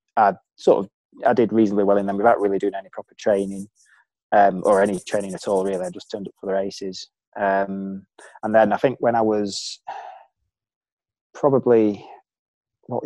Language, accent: English, British